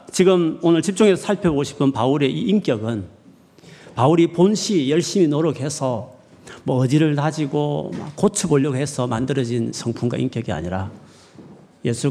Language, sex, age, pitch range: Korean, male, 40-59, 120-180 Hz